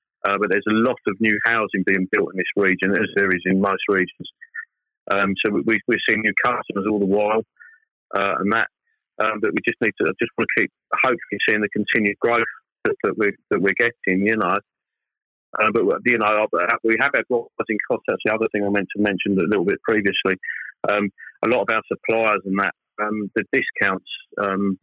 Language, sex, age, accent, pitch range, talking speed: English, male, 30-49, British, 95-110 Hz, 215 wpm